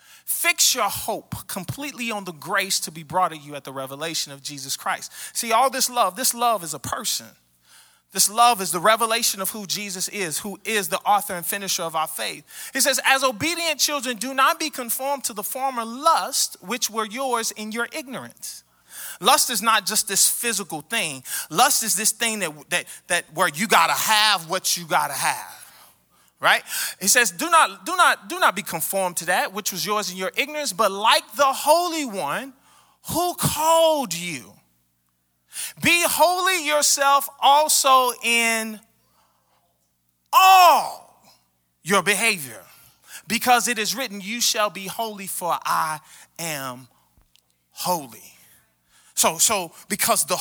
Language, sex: English, male